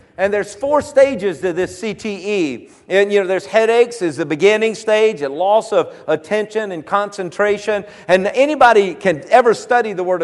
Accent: American